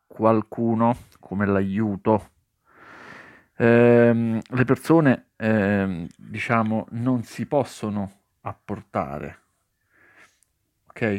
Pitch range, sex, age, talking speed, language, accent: 100-135 Hz, male, 50-69, 65 wpm, Italian, native